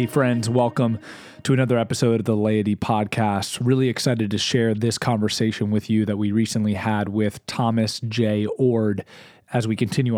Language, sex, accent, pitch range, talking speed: English, male, American, 105-125 Hz, 170 wpm